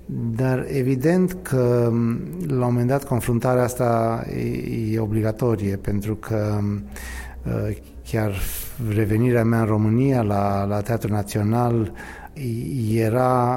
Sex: male